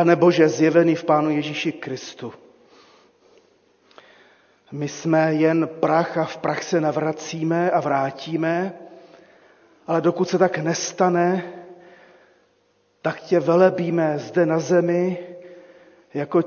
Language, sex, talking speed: Czech, male, 105 wpm